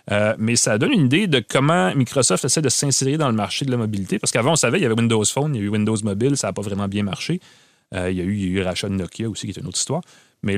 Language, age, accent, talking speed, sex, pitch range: French, 30-49, Canadian, 310 wpm, male, 100-140 Hz